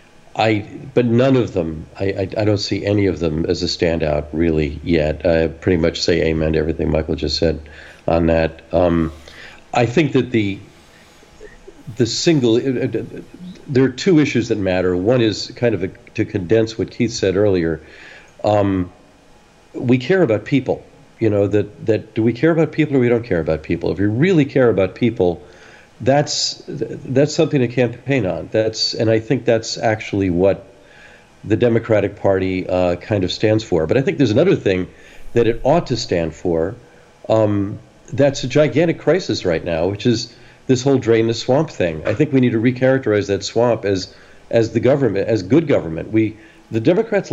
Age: 50-69